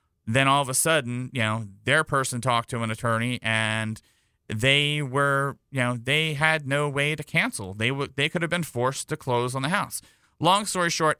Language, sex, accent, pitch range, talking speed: English, male, American, 120-150 Hz, 210 wpm